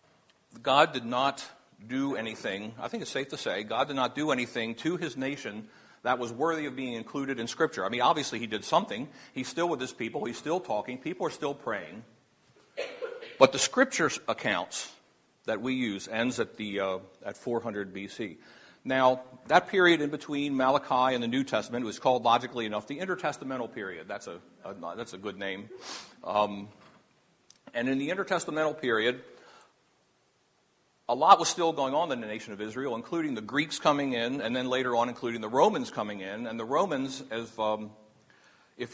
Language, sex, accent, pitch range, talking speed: English, male, American, 115-145 Hz, 185 wpm